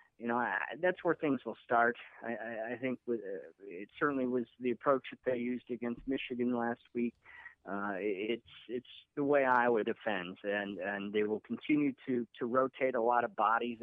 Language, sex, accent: English, male, American